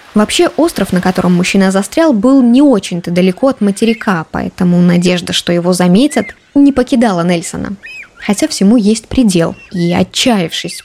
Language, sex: Russian, female